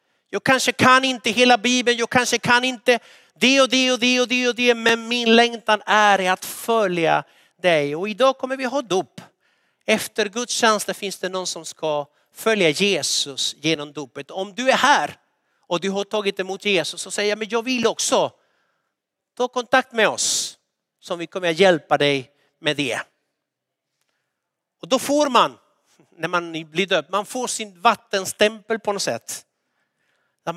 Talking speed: 175 wpm